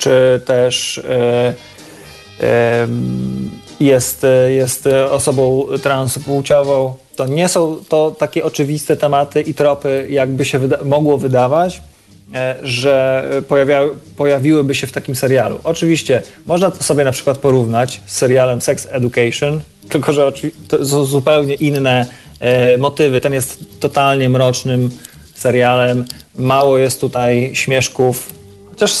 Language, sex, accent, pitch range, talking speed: Polish, male, native, 125-145 Hz, 125 wpm